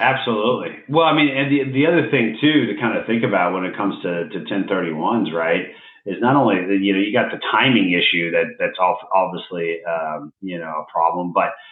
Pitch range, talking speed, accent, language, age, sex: 100-125 Hz, 210 wpm, American, English, 40-59, male